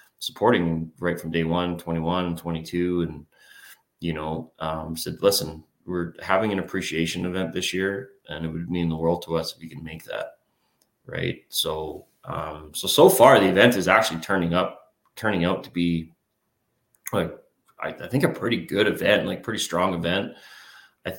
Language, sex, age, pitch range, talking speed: English, male, 30-49, 80-95 Hz, 175 wpm